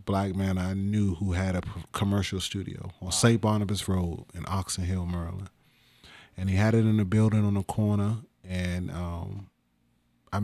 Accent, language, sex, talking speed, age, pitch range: American, English, male, 170 wpm, 30-49, 95-110 Hz